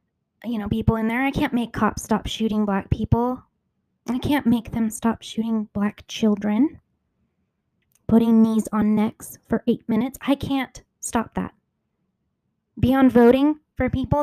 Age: 20-39